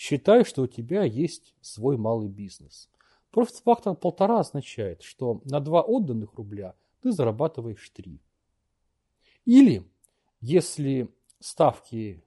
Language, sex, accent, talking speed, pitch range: Russian, male, native, 110 wpm, 110-180 Hz